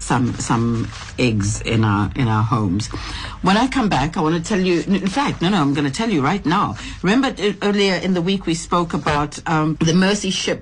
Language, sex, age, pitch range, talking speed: English, female, 60-79, 135-180 Hz, 230 wpm